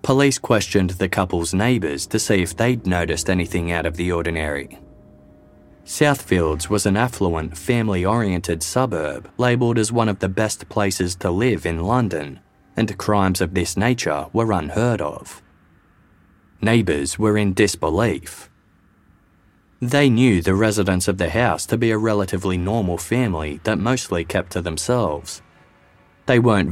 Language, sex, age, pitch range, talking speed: English, male, 30-49, 90-115 Hz, 145 wpm